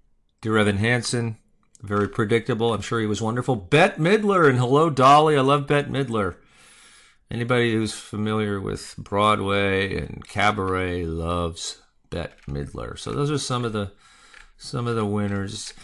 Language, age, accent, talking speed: English, 40-59, American, 140 wpm